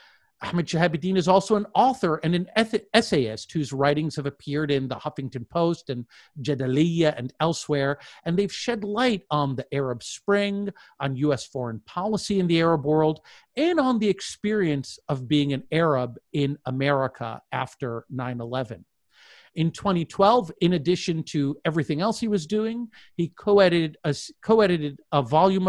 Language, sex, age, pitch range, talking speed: English, male, 50-69, 135-190 Hz, 150 wpm